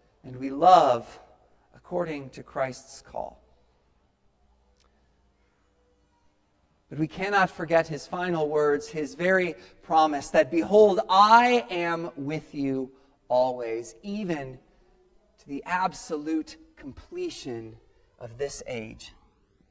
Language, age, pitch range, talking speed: English, 40-59, 135-200 Hz, 95 wpm